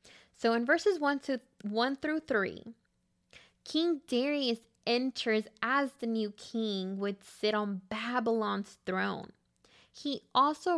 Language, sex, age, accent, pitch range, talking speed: English, female, 10-29, American, 205-265 Hz, 130 wpm